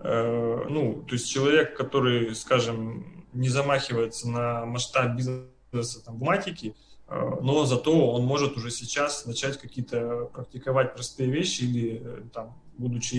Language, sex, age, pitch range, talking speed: Russian, male, 20-39, 120-140 Hz, 125 wpm